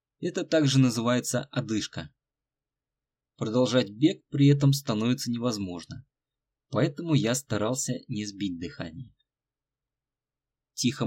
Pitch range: 120-145 Hz